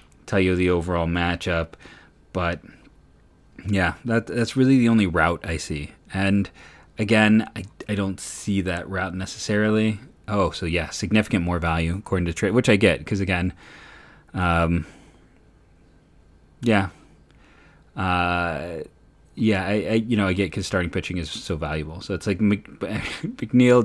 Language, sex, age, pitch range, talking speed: English, male, 30-49, 90-110 Hz, 150 wpm